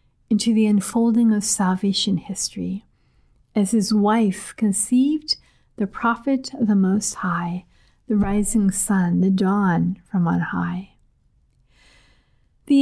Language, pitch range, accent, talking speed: English, 195-245 Hz, American, 115 wpm